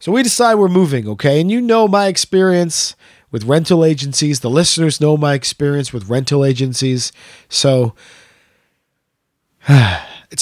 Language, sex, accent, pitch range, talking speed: English, male, American, 130-180 Hz, 140 wpm